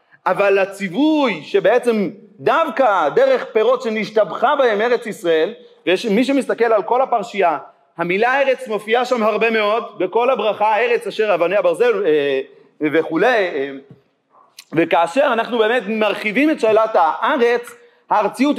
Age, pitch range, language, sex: 30-49, 210-265 Hz, Hebrew, male